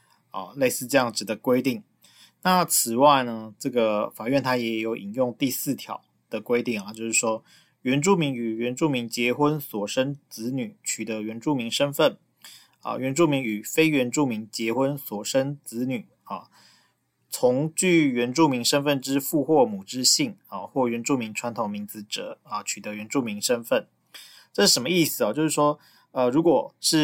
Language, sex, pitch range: Chinese, male, 115-150 Hz